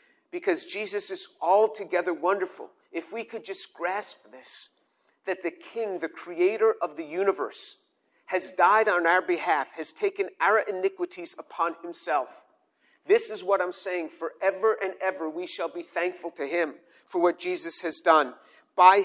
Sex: male